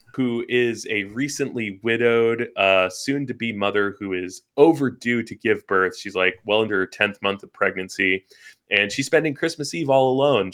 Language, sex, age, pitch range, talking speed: English, male, 20-39, 100-135 Hz, 180 wpm